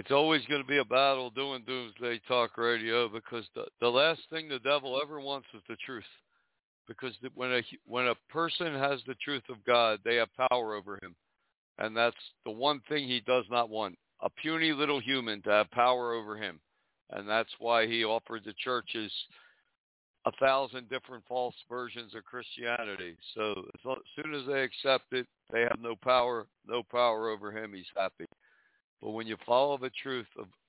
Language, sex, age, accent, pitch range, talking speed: English, male, 60-79, American, 110-135 Hz, 185 wpm